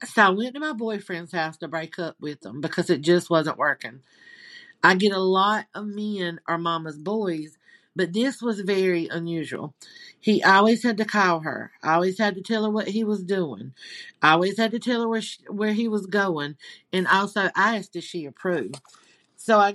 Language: English